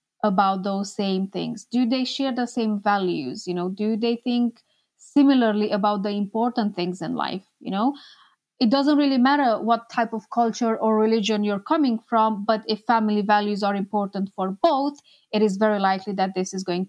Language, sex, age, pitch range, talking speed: English, female, 20-39, 200-245 Hz, 190 wpm